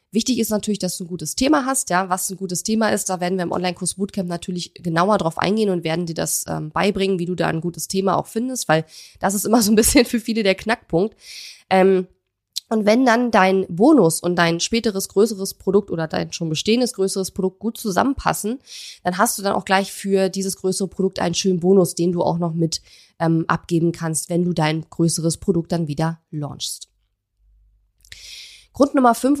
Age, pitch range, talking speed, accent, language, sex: 20-39, 175-220 Hz, 205 wpm, German, German, female